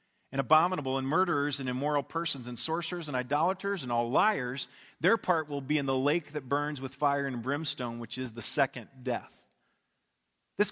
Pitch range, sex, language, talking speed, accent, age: 135-170 Hz, male, English, 185 wpm, American, 40-59